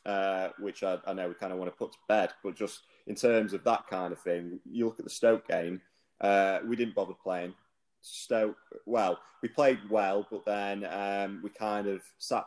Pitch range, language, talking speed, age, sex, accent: 95-115 Hz, English, 215 wpm, 30-49, male, British